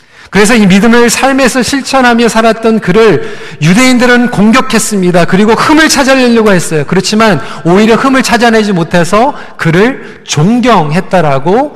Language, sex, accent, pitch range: Korean, male, native, 170-240 Hz